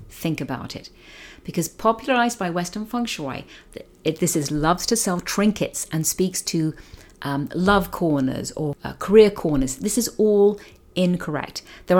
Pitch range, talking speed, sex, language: 155-210 Hz, 150 wpm, female, English